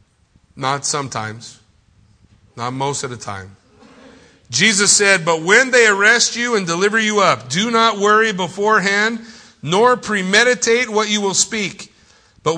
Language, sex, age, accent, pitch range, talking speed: English, male, 50-69, American, 110-180 Hz, 140 wpm